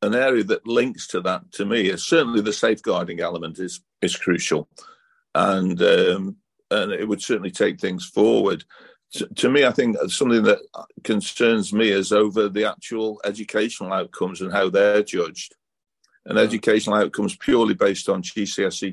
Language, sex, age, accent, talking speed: English, male, 50-69, British, 160 wpm